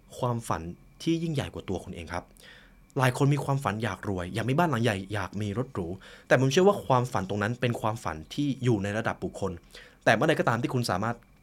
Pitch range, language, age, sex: 95-135 Hz, Thai, 20-39, male